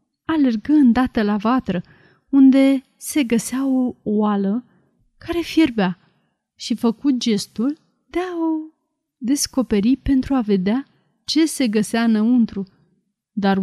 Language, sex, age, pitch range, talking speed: Romanian, female, 30-49, 210-275 Hz, 110 wpm